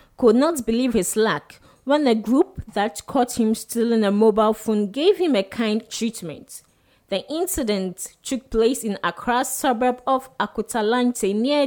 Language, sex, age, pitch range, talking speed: English, female, 20-39, 210-270 Hz, 160 wpm